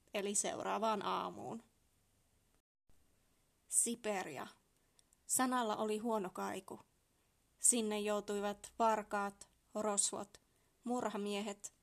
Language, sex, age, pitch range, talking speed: Finnish, female, 20-39, 195-235 Hz, 65 wpm